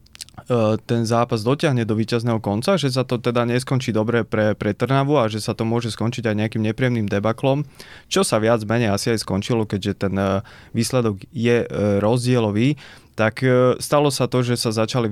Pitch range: 105-120 Hz